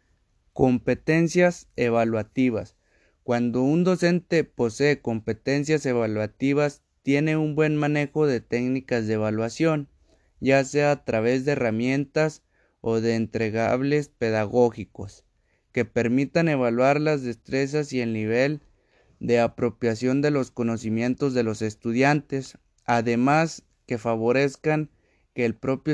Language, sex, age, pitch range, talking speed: Spanish, male, 30-49, 115-140 Hz, 110 wpm